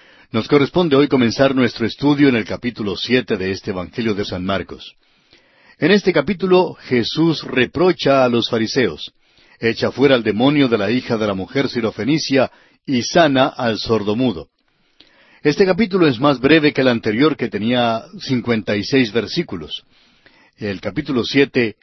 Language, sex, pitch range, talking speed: Spanish, male, 115-150 Hz, 155 wpm